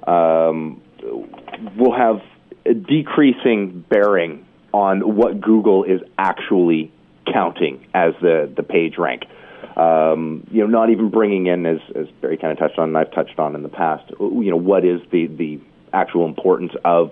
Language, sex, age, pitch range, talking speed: English, male, 40-59, 90-125 Hz, 160 wpm